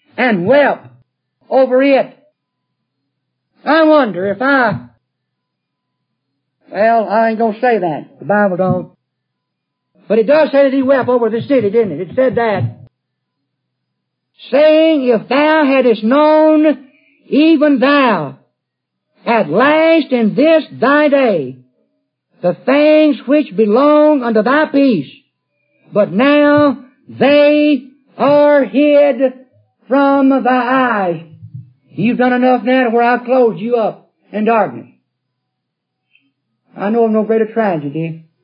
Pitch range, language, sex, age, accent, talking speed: 185-275 Hz, English, male, 50-69, American, 125 wpm